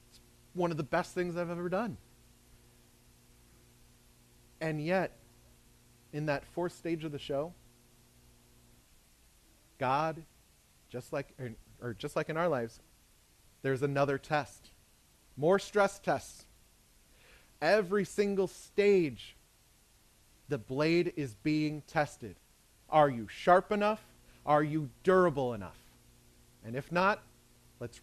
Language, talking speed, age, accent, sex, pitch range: English, 105 wpm, 30-49, American, male, 110-170 Hz